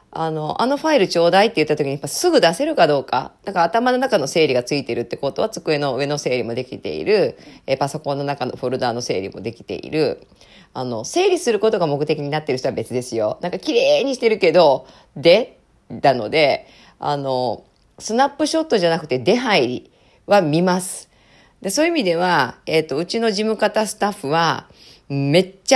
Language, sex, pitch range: Japanese, female, 145-230 Hz